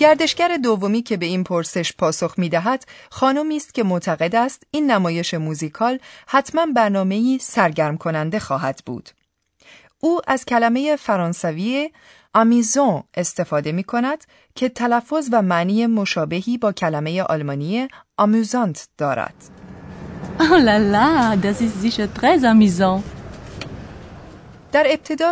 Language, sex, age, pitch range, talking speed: Persian, female, 40-59, 170-255 Hz, 100 wpm